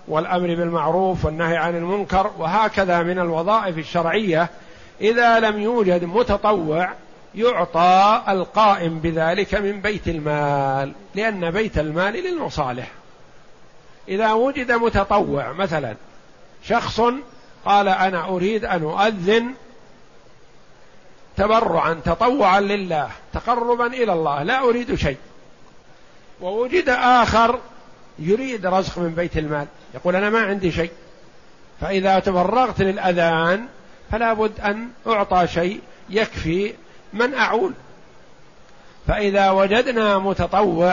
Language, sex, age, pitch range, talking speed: Arabic, male, 50-69, 175-225 Hz, 100 wpm